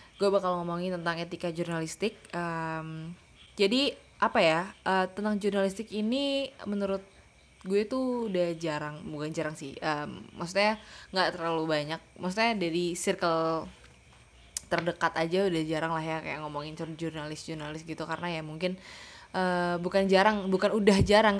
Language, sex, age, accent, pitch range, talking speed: Indonesian, female, 20-39, native, 160-195 Hz, 130 wpm